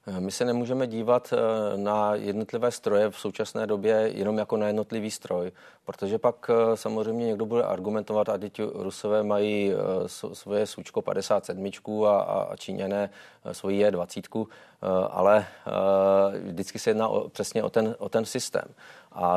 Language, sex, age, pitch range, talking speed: Czech, male, 30-49, 95-110 Hz, 145 wpm